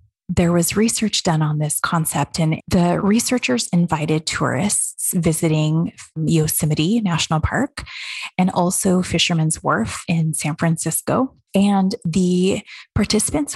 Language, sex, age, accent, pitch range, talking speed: English, female, 20-39, American, 160-200 Hz, 115 wpm